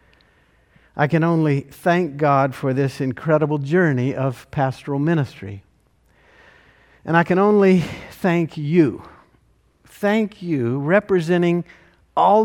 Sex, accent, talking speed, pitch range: male, American, 105 wpm, 125-160 Hz